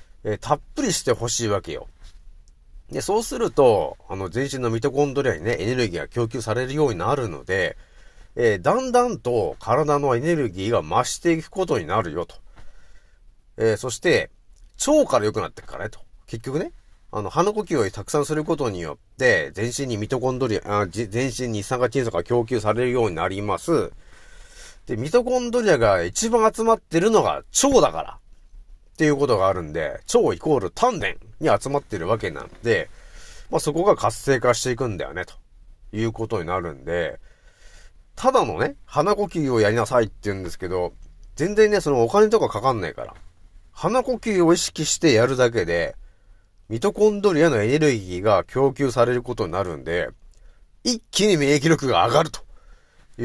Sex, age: male, 40-59